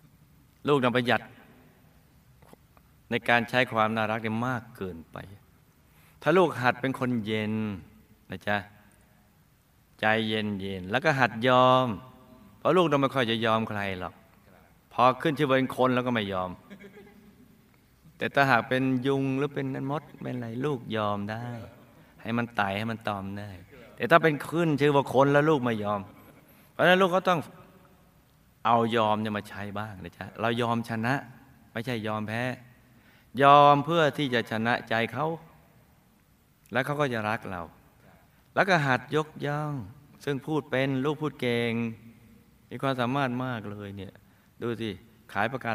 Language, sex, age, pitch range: Thai, male, 20-39, 110-140 Hz